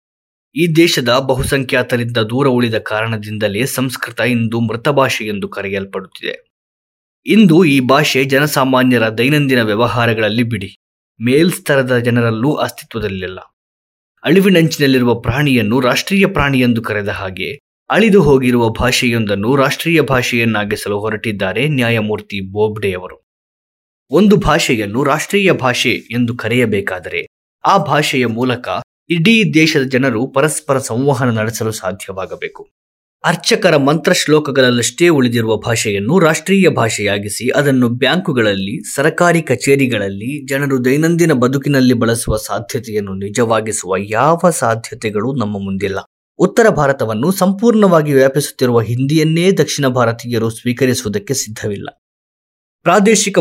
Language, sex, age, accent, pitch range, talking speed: Kannada, male, 20-39, native, 110-150 Hz, 95 wpm